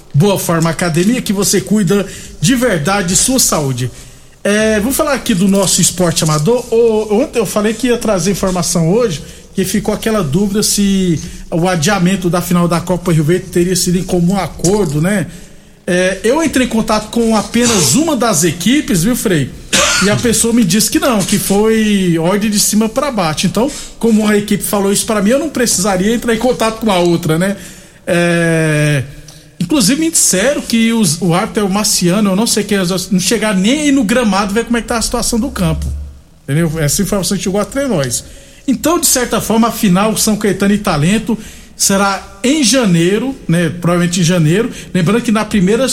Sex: male